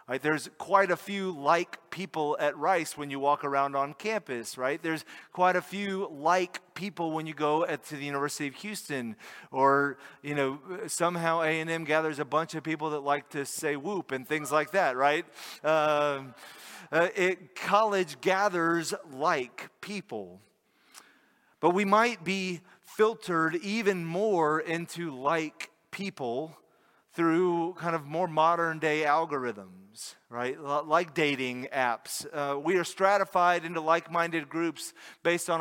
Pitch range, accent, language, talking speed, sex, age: 145-180 Hz, American, English, 140 wpm, male, 30-49